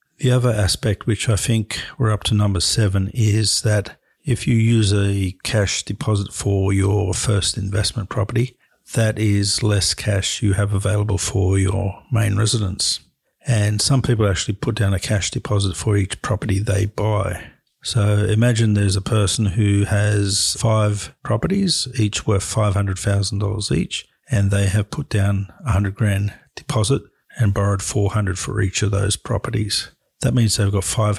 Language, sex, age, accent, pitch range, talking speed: English, male, 50-69, Australian, 100-110 Hz, 165 wpm